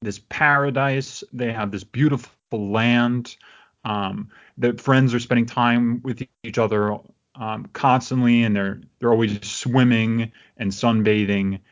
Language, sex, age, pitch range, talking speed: English, male, 30-49, 110-140 Hz, 130 wpm